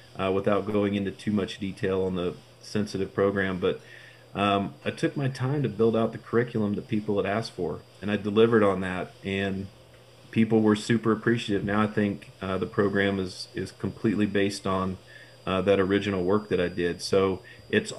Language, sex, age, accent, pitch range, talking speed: English, male, 30-49, American, 100-115 Hz, 190 wpm